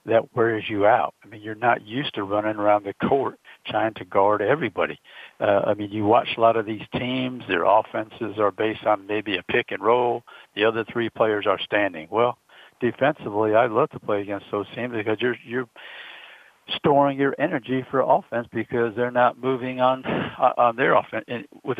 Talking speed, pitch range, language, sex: 200 wpm, 110-125 Hz, English, male